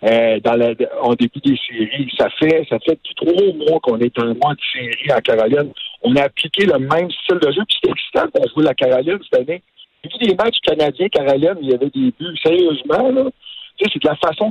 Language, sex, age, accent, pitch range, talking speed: French, male, 60-79, French, 140-235 Hz, 240 wpm